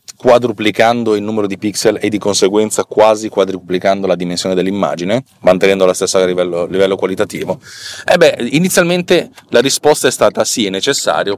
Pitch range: 95-125 Hz